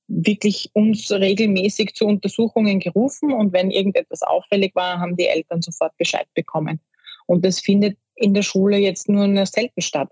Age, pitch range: 20-39, 175-200 Hz